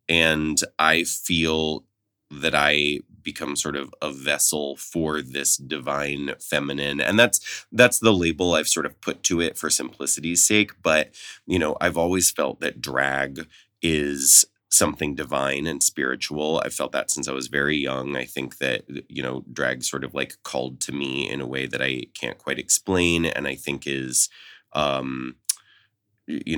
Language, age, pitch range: English, 20-39, 70-80 Hz